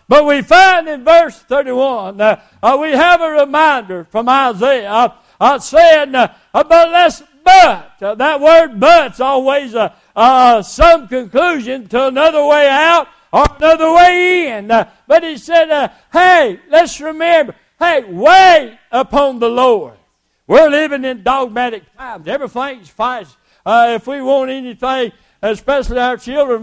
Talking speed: 150 wpm